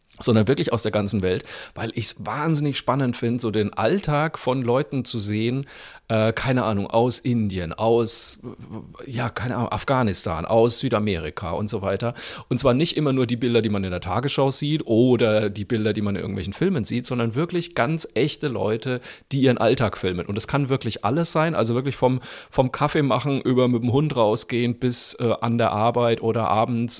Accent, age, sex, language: German, 40-59, male, German